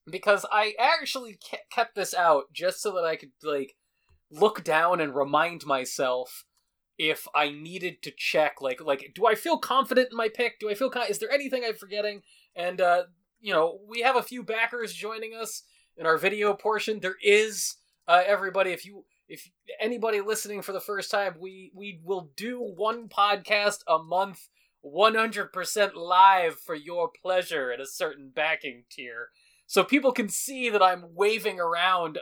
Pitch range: 165-225 Hz